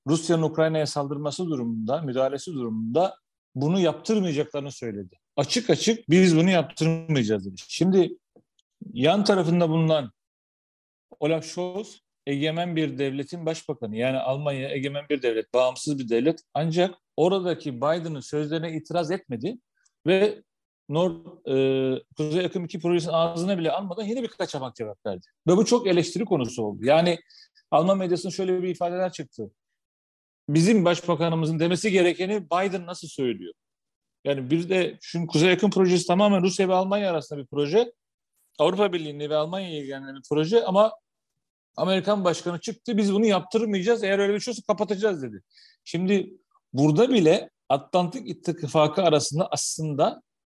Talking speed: 135 wpm